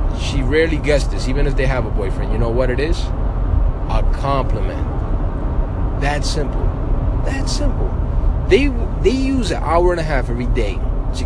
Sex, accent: male, American